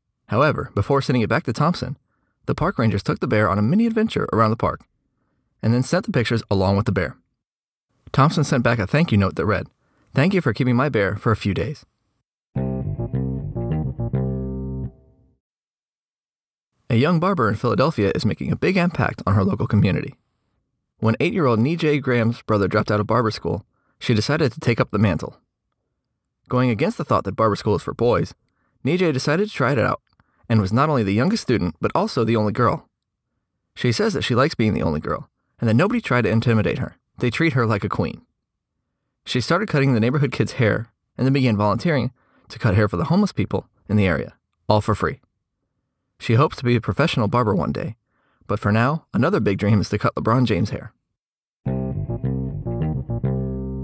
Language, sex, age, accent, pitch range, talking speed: English, male, 20-39, American, 105-130 Hz, 195 wpm